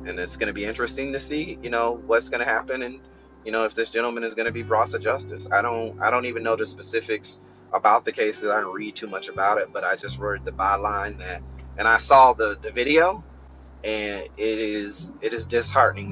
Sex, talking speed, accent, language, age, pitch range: male, 240 wpm, American, English, 30-49, 100-130 Hz